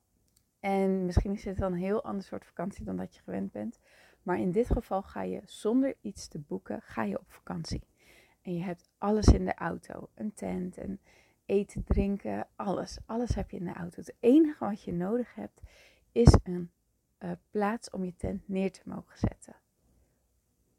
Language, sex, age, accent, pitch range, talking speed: Dutch, female, 30-49, Dutch, 175-210 Hz, 190 wpm